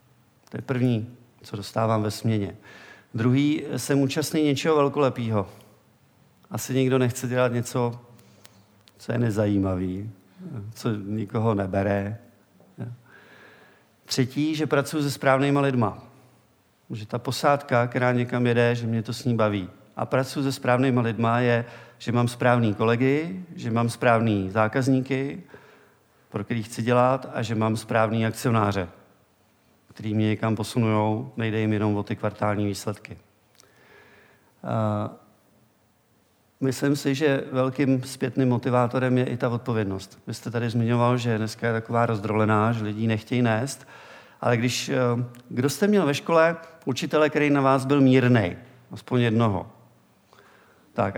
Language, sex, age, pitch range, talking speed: Czech, male, 50-69, 110-130 Hz, 135 wpm